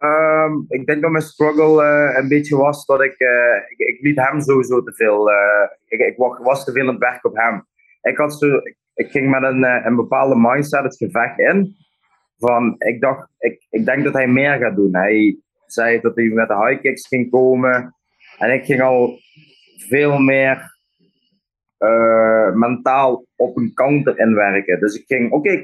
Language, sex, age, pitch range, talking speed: Dutch, male, 20-39, 120-150 Hz, 195 wpm